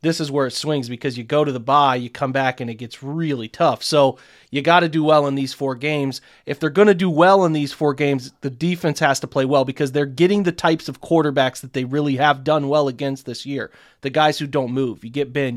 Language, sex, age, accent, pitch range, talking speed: English, male, 30-49, American, 135-165 Hz, 265 wpm